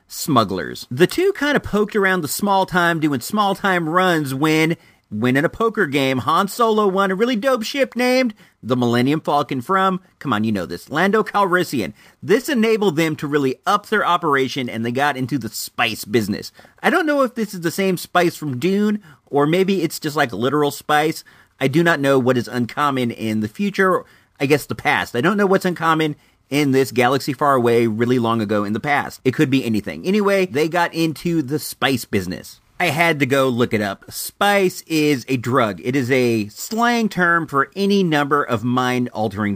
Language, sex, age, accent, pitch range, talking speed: English, male, 40-59, American, 130-195 Hz, 205 wpm